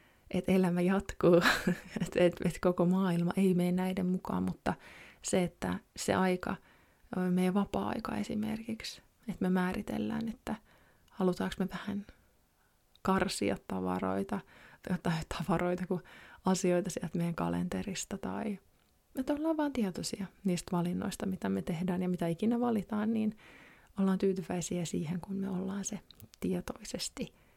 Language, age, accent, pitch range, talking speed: Finnish, 20-39, native, 175-205 Hz, 130 wpm